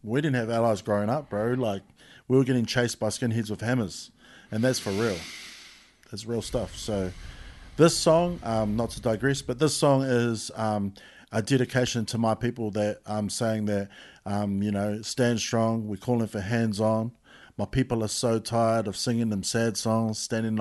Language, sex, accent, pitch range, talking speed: English, male, Australian, 105-125 Hz, 185 wpm